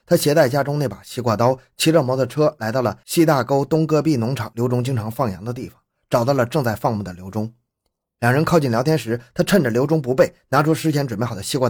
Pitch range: 115-150 Hz